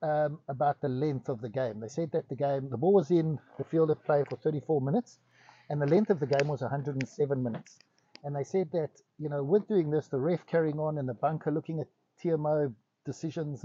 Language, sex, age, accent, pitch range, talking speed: English, male, 60-79, South African, 140-170 Hz, 230 wpm